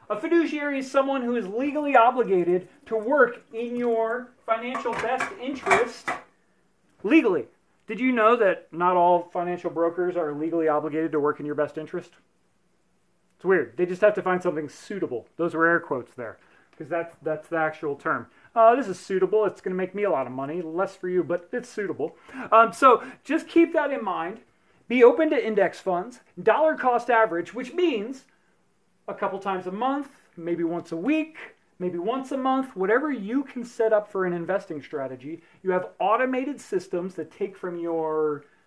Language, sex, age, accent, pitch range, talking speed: English, male, 30-49, American, 170-245 Hz, 185 wpm